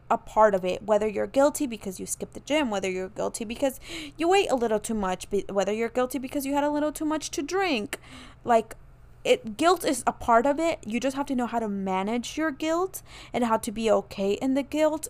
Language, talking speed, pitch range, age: English, 240 wpm, 215-275 Hz, 20-39